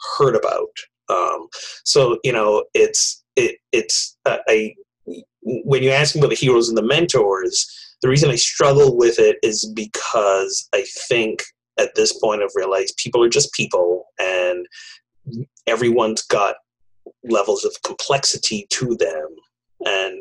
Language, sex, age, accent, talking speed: English, male, 30-49, American, 145 wpm